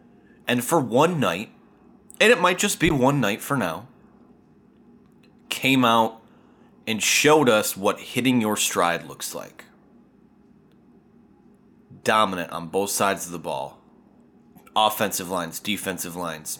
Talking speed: 125 wpm